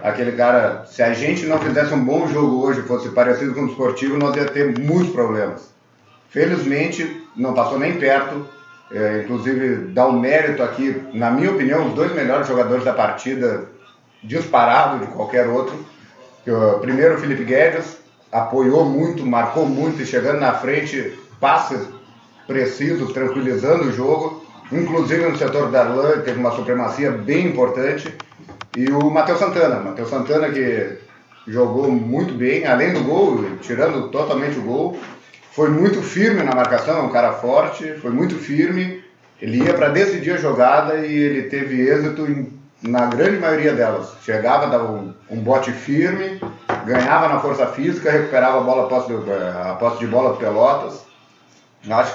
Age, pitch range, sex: 40-59, 125-155 Hz, male